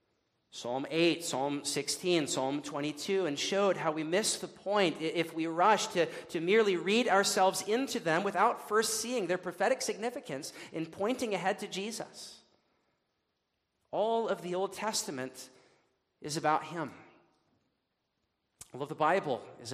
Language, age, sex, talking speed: English, 40-59, male, 145 wpm